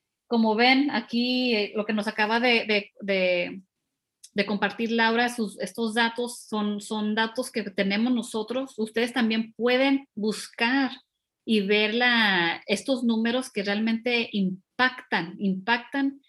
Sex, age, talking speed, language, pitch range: female, 30-49, 135 wpm, Spanish, 200-245 Hz